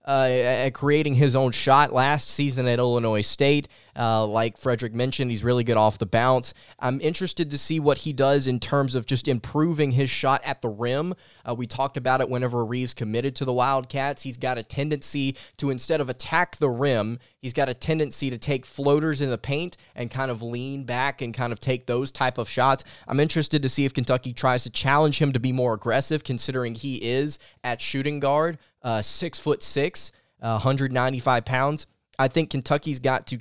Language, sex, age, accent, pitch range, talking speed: English, male, 20-39, American, 120-140 Hz, 205 wpm